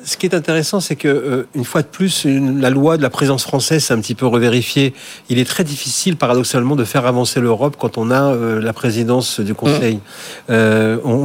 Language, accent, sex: French, French, male